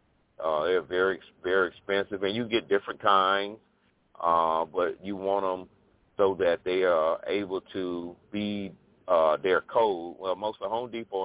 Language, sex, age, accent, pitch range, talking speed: English, male, 40-59, American, 90-105 Hz, 165 wpm